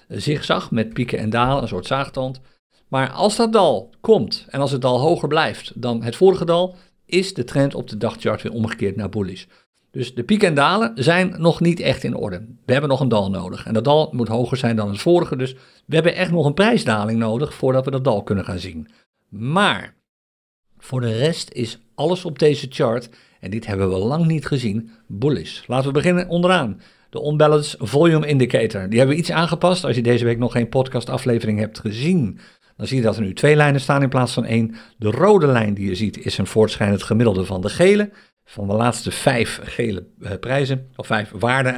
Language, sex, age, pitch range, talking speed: Dutch, male, 50-69, 110-150 Hz, 215 wpm